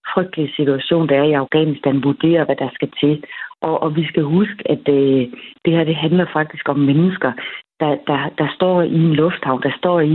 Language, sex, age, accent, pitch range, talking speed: Danish, female, 40-59, native, 140-165 Hz, 205 wpm